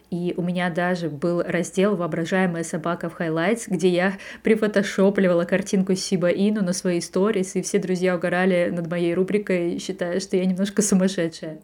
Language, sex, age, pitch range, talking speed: Russian, female, 20-39, 180-210 Hz, 160 wpm